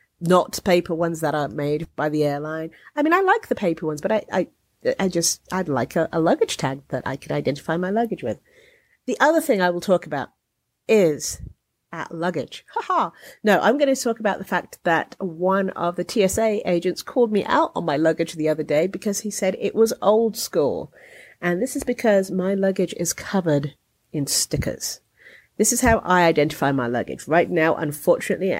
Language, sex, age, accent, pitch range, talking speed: English, female, 40-59, British, 150-195 Hz, 195 wpm